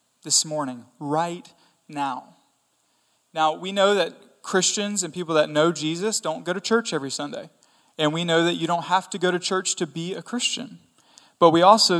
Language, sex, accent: English, male, American